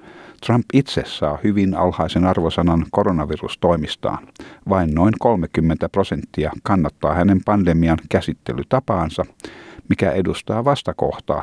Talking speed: 95 wpm